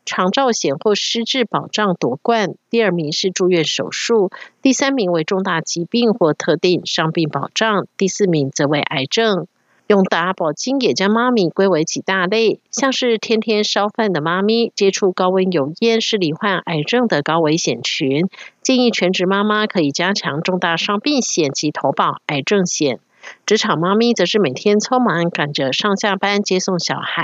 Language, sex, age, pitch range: English, female, 50-69, 170-220 Hz